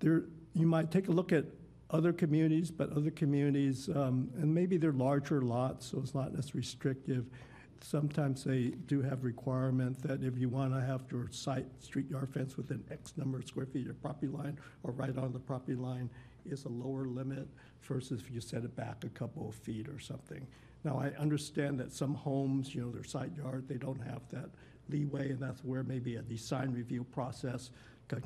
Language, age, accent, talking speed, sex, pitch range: English, 60-79, American, 200 wpm, male, 125-145 Hz